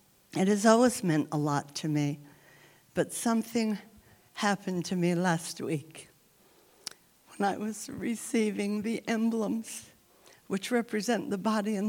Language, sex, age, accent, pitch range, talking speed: English, female, 60-79, American, 180-225 Hz, 130 wpm